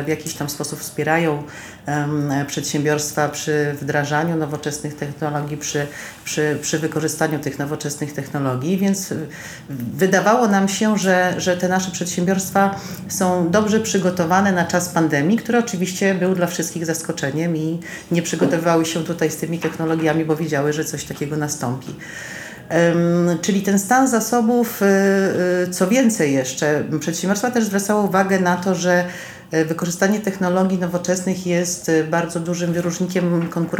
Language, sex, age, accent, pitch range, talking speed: Polish, female, 40-59, native, 150-185 Hz, 130 wpm